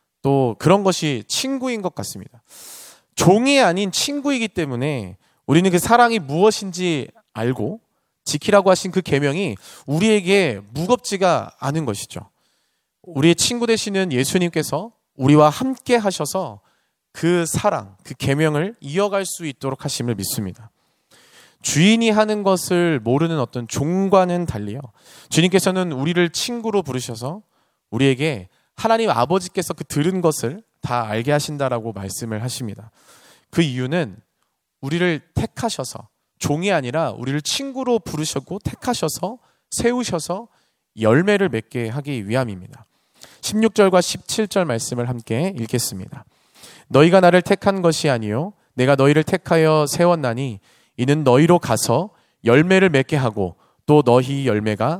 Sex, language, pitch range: male, Korean, 125-190 Hz